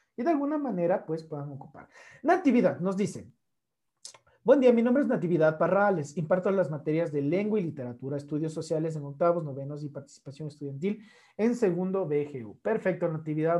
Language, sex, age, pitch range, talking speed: Spanish, male, 40-59, 160-220 Hz, 165 wpm